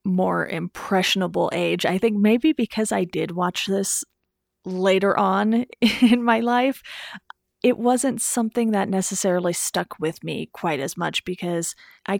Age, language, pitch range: 30-49, English, 180-225 Hz